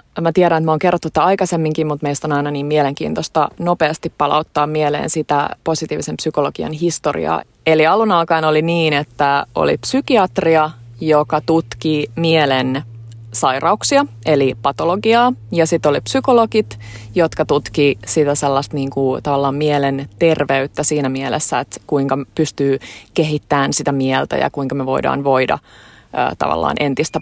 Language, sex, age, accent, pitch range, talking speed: Finnish, female, 20-39, native, 145-175 Hz, 140 wpm